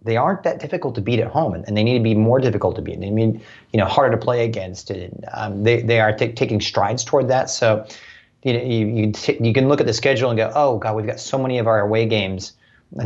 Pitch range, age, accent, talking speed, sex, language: 105-120 Hz, 30-49, American, 275 wpm, male, English